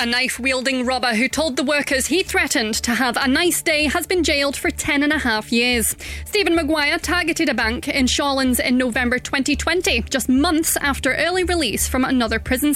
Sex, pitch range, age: female, 240-315 Hz, 20-39